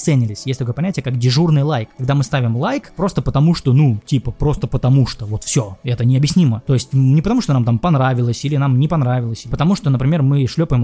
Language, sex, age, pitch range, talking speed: Russian, male, 20-39, 125-160 Hz, 225 wpm